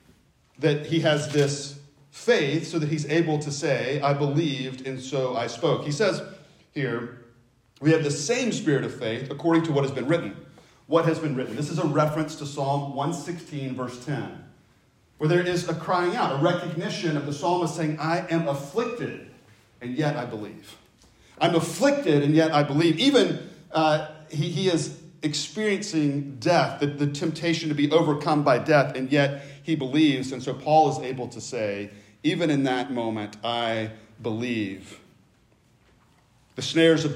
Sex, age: male, 40-59